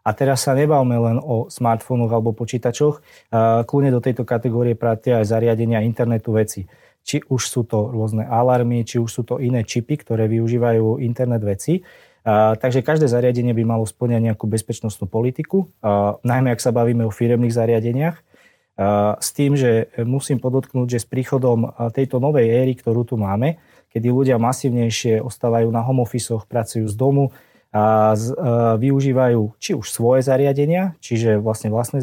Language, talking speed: Slovak, 155 wpm